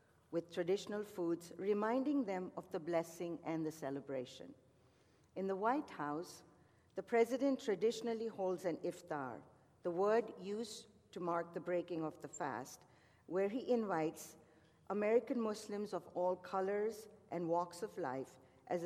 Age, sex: 50-69, female